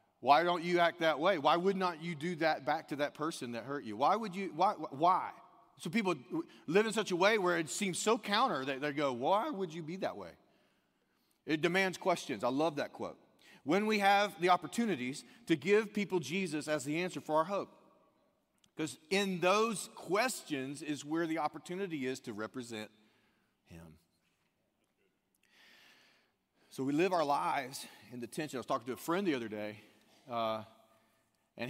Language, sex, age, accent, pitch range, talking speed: English, male, 40-59, American, 115-165 Hz, 185 wpm